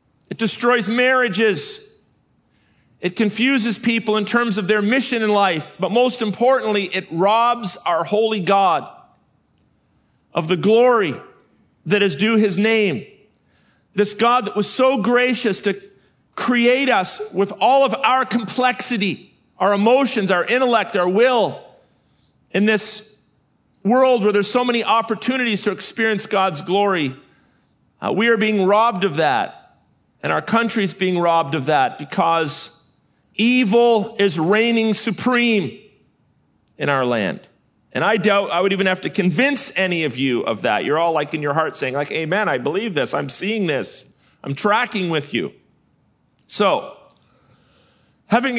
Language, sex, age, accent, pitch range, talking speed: English, male, 40-59, American, 175-230 Hz, 145 wpm